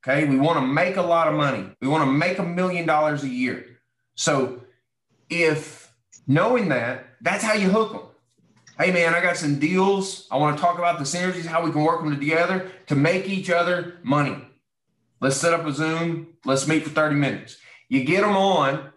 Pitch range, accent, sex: 135-170 Hz, American, male